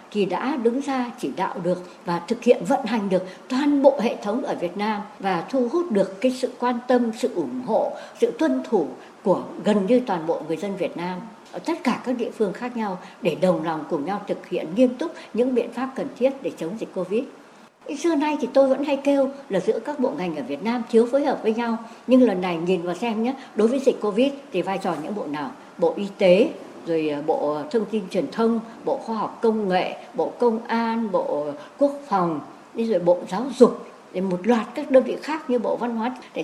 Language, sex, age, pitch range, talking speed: Vietnamese, male, 60-79, 200-275 Hz, 235 wpm